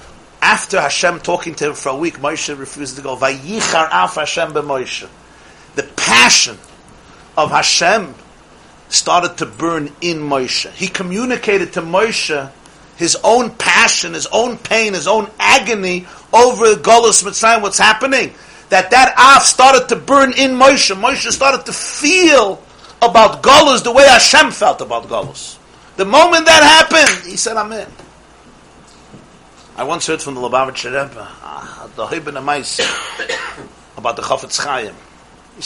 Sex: male